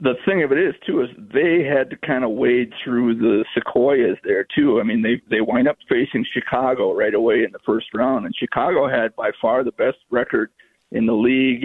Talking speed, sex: 220 wpm, male